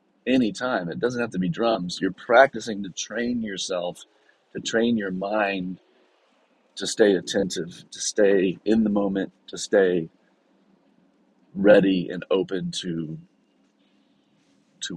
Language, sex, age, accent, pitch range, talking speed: English, male, 40-59, American, 90-115 Hz, 130 wpm